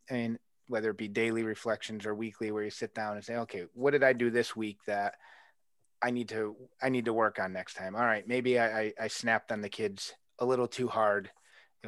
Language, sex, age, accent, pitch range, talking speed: English, male, 30-49, American, 110-135 Hz, 250 wpm